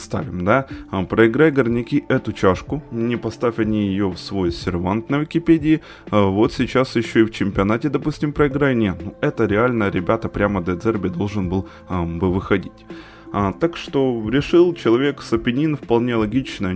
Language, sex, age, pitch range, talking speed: Ukrainian, male, 20-39, 95-125 Hz, 140 wpm